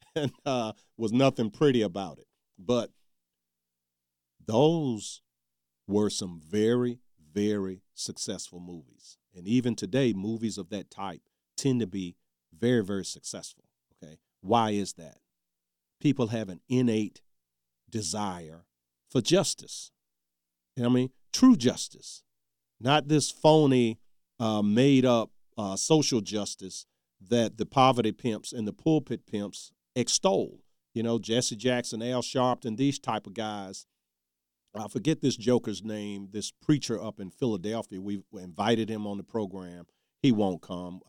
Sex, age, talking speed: male, 40-59, 135 wpm